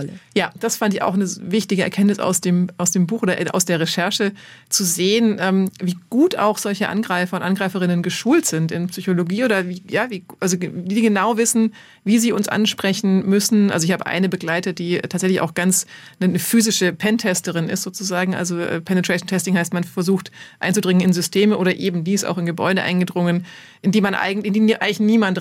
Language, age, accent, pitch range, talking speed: German, 30-49, German, 180-205 Hz, 190 wpm